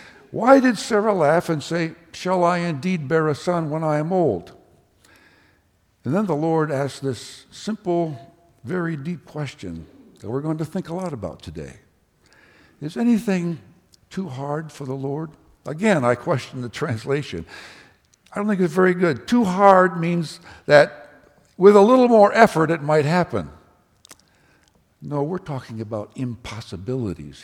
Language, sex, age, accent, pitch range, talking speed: English, male, 60-79, American, 115-175 Hz, 155 wpm